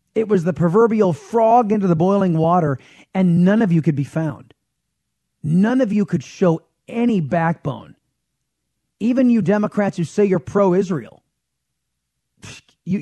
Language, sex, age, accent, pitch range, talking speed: English, male, 40-59, American, 145-200 Hz, 145 wpm